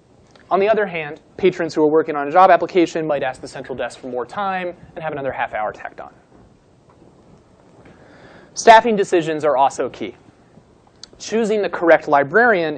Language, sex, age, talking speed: English, male, 30-49, 170 wpm